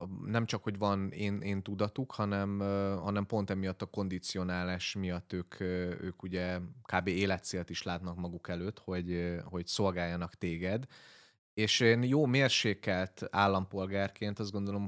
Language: Hungarian